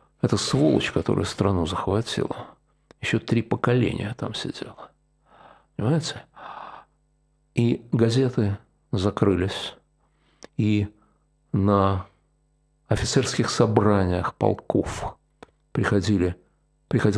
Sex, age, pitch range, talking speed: male, 50-69, 105-145 Hz, 70 wpm